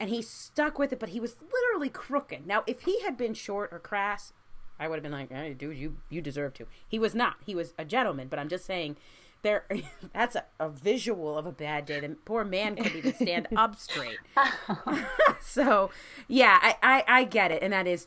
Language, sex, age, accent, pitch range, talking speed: English, female, 30-49, American, 150-225 Hz, 225 wpm